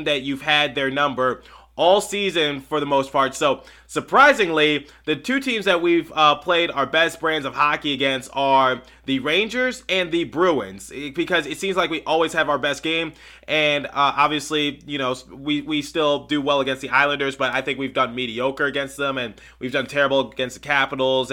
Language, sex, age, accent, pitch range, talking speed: English, male, 20-39, American, 130-155 Hz, 195 wpm